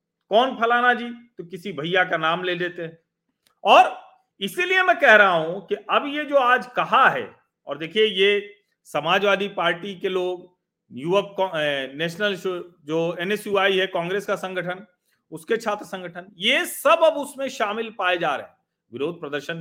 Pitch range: 160-230 Hz